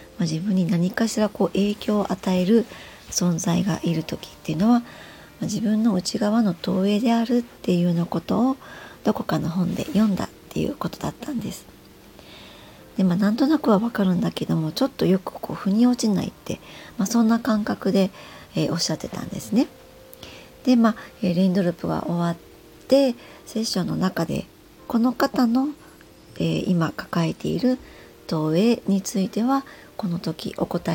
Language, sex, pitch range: Japanese, male, 175-230 Hz